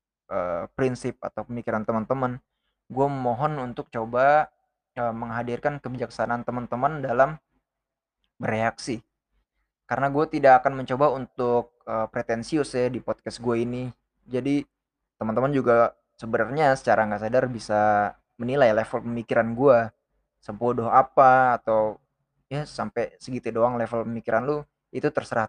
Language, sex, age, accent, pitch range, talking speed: Indonesian, male, 20-39, native, 115-135 Hz, 115 wpm